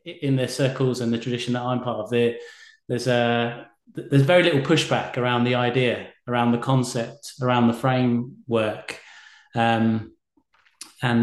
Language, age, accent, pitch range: English, 30-49, British, 120-135 Hz